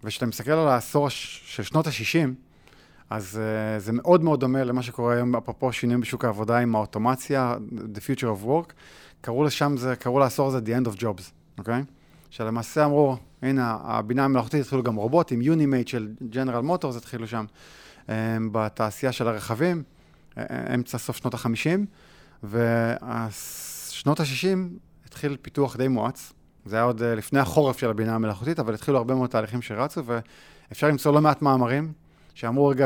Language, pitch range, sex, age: Hebrew, 115-145 Hz, male, 30-49